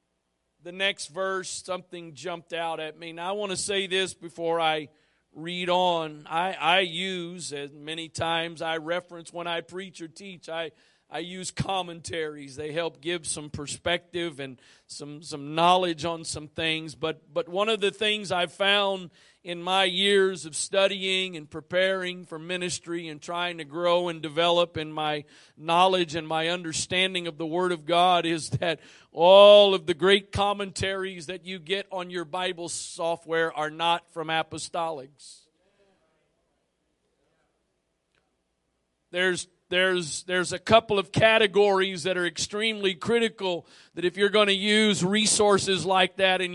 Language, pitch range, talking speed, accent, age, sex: English, 160-190 Hz, 155 wpm, American, 40-59, male